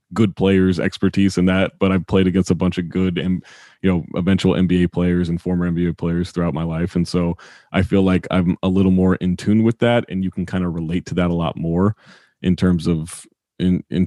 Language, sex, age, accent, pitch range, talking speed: English, male, 30-49, American, 90-100 Hz, 235 wpm